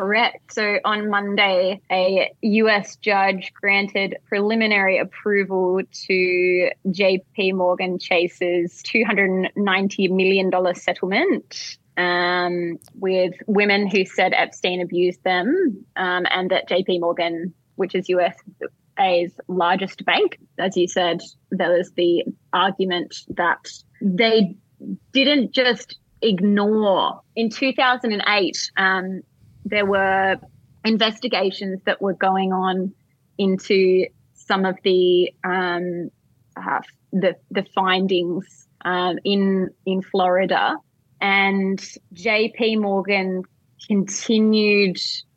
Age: 20-39